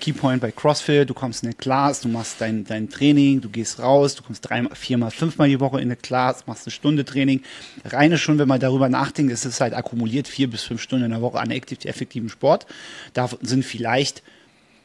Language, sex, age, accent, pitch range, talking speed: German, male, 30-49, German, 115-135 Hz, 220 wpm